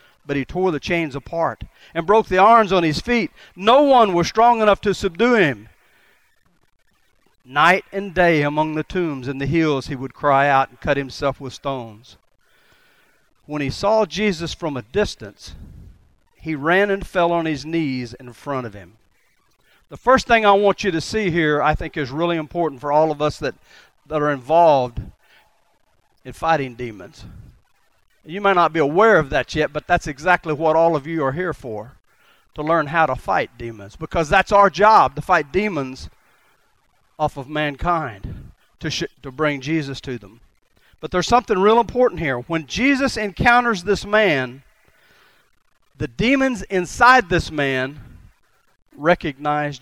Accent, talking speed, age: American, 165 wpm, 40-59